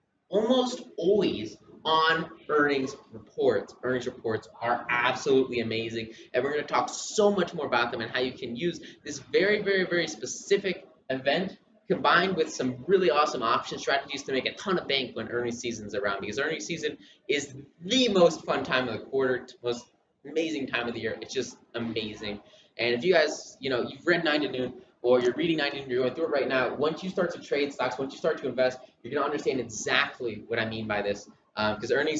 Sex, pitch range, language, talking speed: male, 110-150 Hz, English, 210 wpm